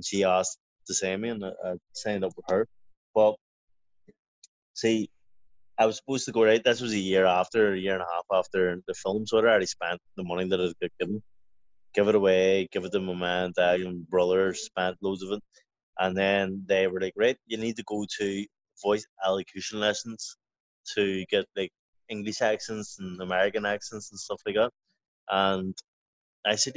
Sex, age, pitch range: male, 20-39, 95-115 Hz